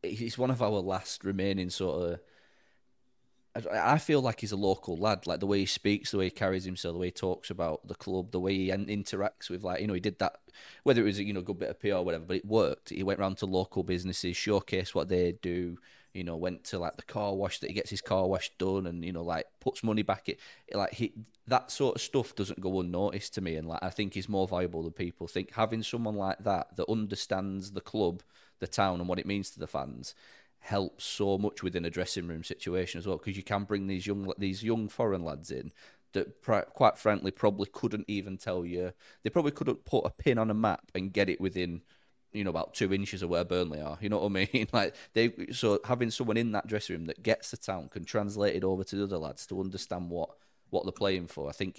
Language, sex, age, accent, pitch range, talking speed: English, male, 30-49, British, 90-105 Hz, 250 wpm